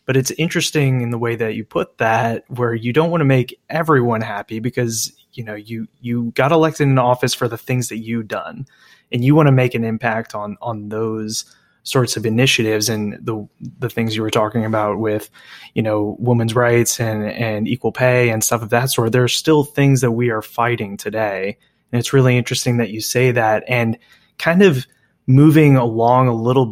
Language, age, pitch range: English, 20-39, 115-135 Hz